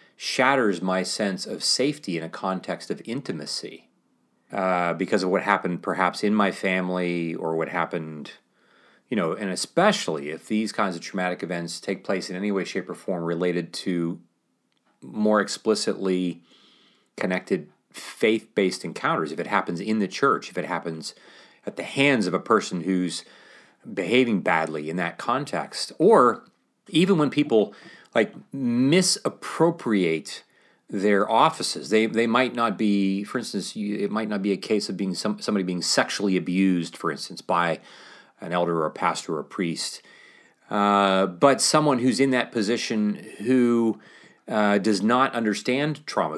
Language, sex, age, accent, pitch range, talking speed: English, male, 30-49, American, 90-115 Hz, 155 wpm